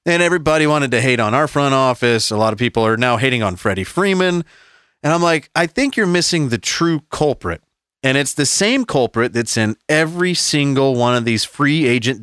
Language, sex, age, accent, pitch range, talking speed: English, male, 30-49, American, 110-145 Hz, 210 wpm